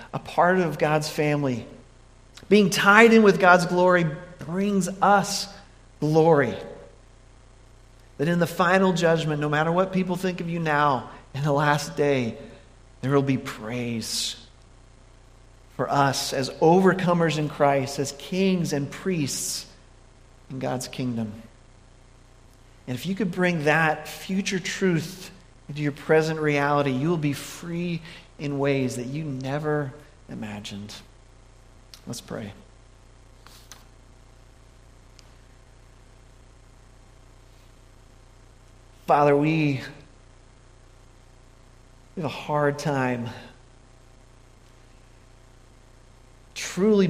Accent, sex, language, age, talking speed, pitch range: American, male, English, 40-59, 100 wpm, 125-160 Hz